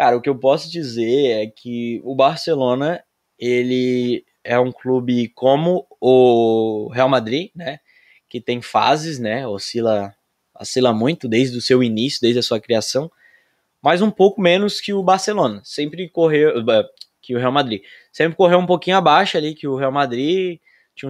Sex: male